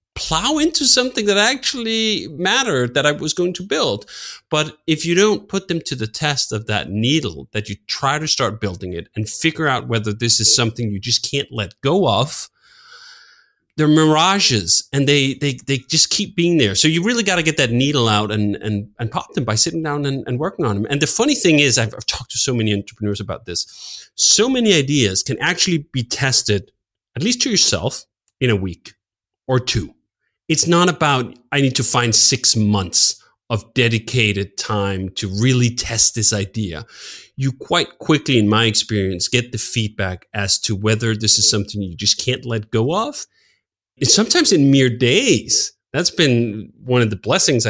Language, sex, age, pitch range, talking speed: English, male, 30-49, 110-155 Hz, 195 wpm